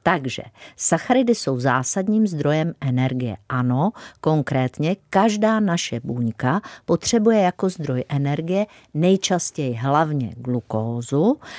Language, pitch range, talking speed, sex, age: Czech, 135-195 Hz, 95 wpm, female, 50-69